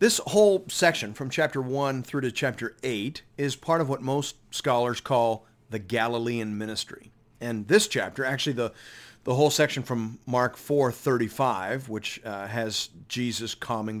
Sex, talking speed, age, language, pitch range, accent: male, 155 wpm, 40-59, English, 115-150 Hz, American